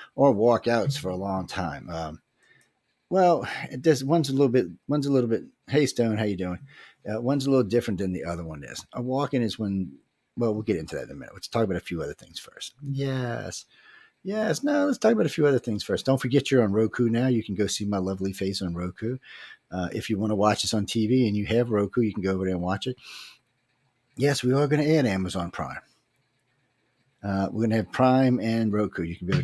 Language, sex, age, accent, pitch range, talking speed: English, male, 40-59, American, 95-125 Hz, 245 wpm